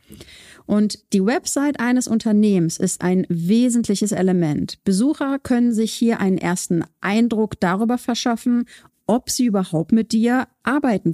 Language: German